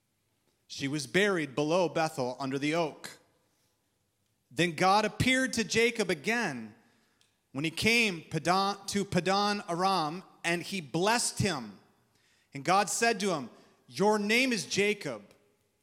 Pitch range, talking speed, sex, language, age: 130-220 Hz, 125 wpm, male, English, 30-49